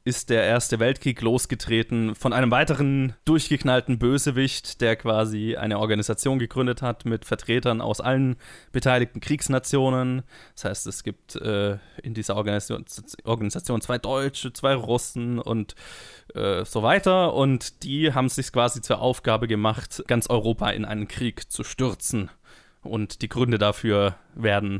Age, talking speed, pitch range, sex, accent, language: 20-39, 145 wpm, 110-130 Hz, male, German, German